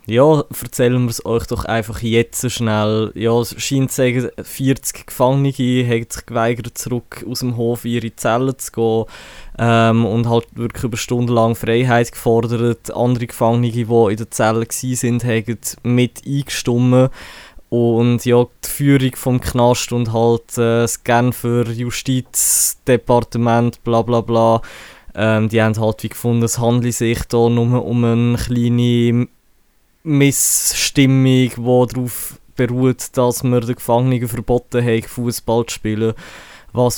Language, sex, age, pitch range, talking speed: German, male, 20-39, 115-125 Hz, 145 wpm